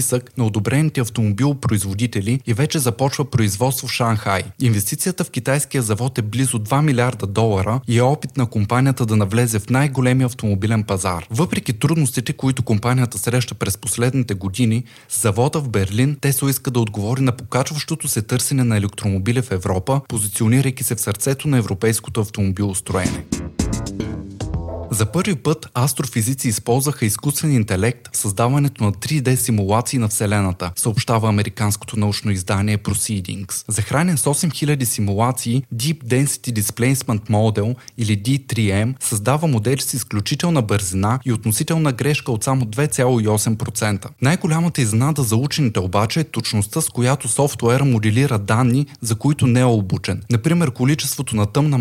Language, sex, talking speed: Bulgarian, male, 140 wpm